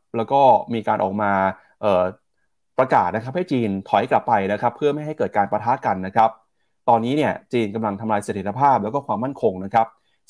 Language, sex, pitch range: Thai, male, 100-135 Hz